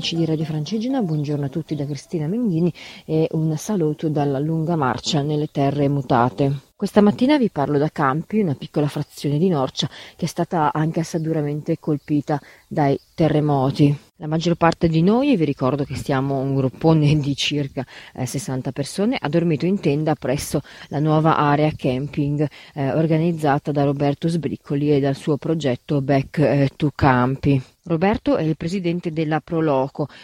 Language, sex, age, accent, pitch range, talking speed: Italian, female, 30-49, native, 140-165 Hz, 165 wpm